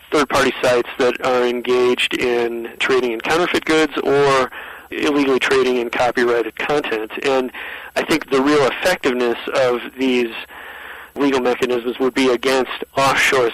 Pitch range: 120-130 Hz